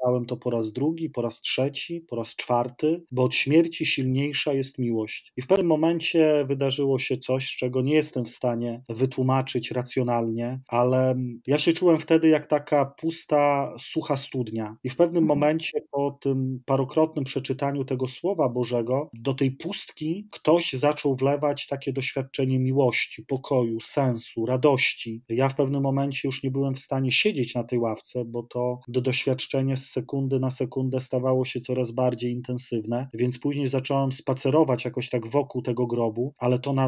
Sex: male